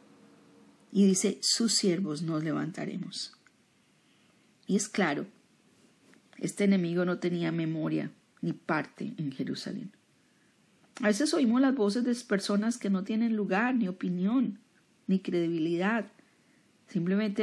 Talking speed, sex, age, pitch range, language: 115 wpm, female, 40-59, 170-215 Hz, Spanish